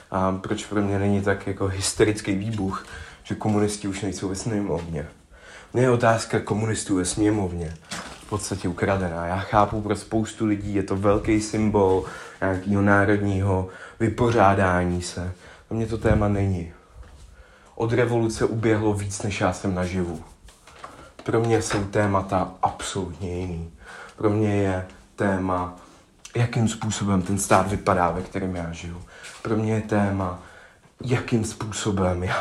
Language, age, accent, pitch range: Czech, 30-49, native, 95-110 Hz